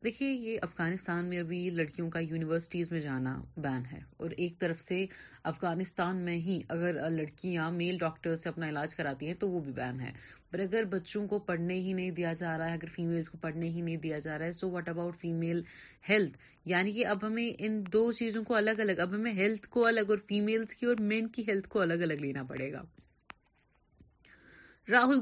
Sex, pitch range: female, 160-215 Hz